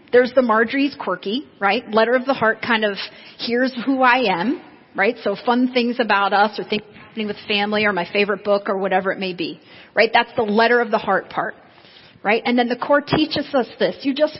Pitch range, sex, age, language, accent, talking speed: 210-255 Hz, female, 30-49, English, American, 220 wpm